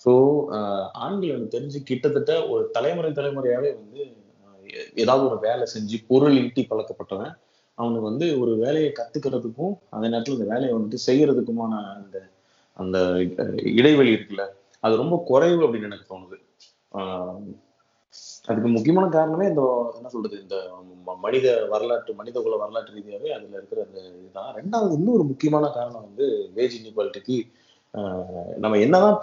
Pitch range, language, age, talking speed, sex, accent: 105-150 Hz, Tamil, 30-49, 135 wpm, male, native